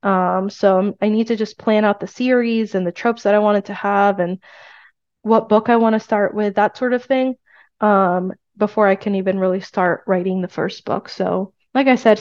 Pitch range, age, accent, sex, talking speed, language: 190-225 Hz, 20-39, American, female, 220 wpm, English